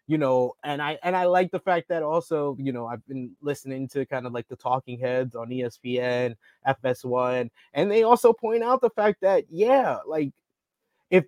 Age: 20-39